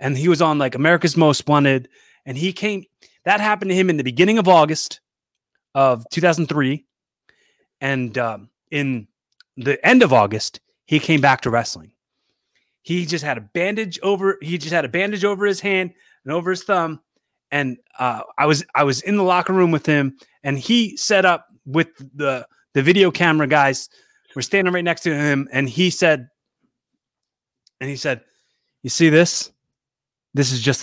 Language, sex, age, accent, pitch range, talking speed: English, male, 30-49, American, 140-185 Hz, 180 wpm